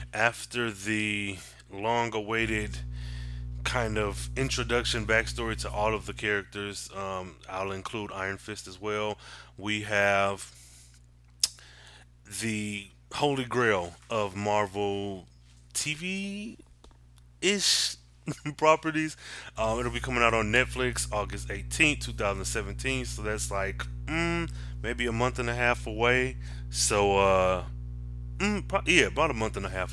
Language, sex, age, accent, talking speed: English, male, 20-39, American, 120 wpm